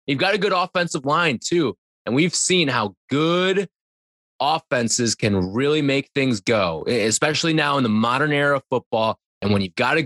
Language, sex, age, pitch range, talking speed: English, male, 20-39, 115-165 Hz, 185 wpm